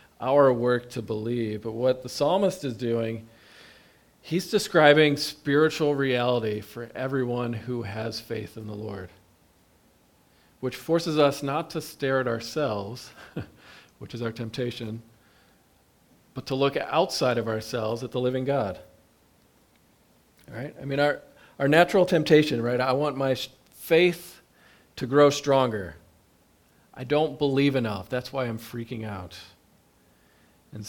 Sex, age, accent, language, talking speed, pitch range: male, 40-59, American, English, 135 wpm, 110-140 Hz